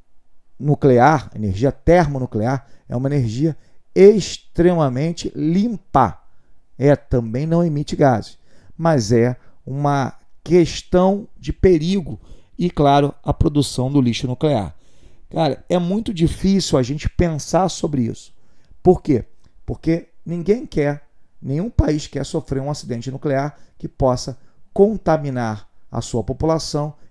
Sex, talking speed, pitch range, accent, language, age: male, 115 wpm, 125-170 Hz, Brazilian, Portuguese, 40-59